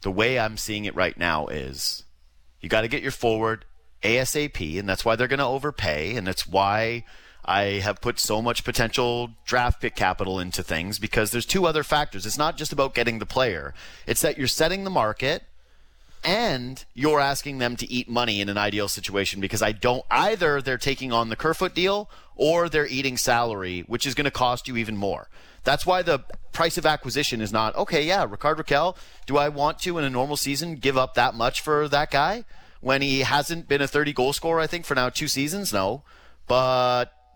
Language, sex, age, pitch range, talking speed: English, male, 30-49, 105-150 Hz, 210 wpm